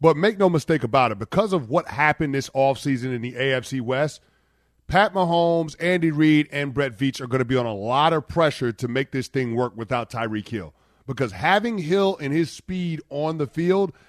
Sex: male